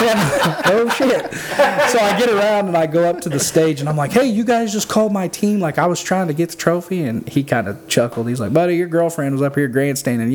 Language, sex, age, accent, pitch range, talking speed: English, male, 20-39, American, 115-165 Hz, 260 wpm